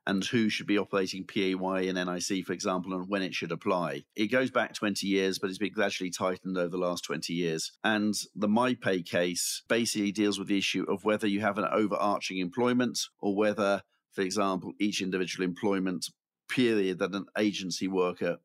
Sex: male